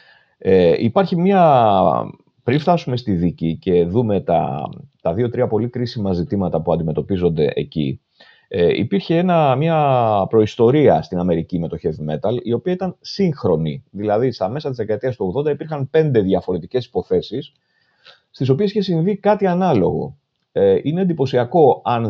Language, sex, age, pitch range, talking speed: Greek, male, 30-49, 100-135 Hz, 145 wpm